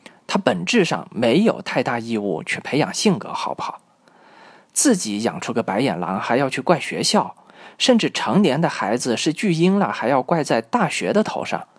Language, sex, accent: Chinese, male, native